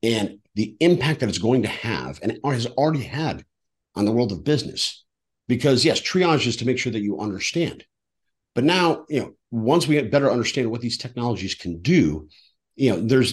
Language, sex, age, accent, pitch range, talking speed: English, male, 50-69, American, 105-140 Hz, 200 wpm